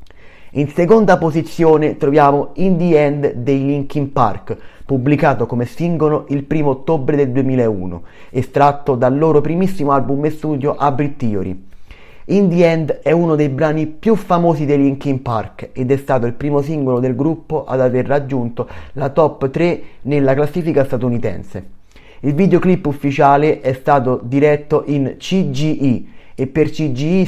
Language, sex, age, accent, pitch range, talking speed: Italian, male, 30-49, native, 125-155 Hz, 145 wpm